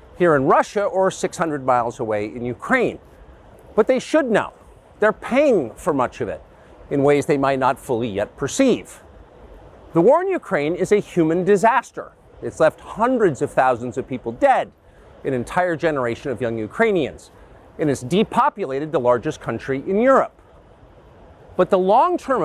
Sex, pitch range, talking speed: male, 135-215 Hz, 160 wpm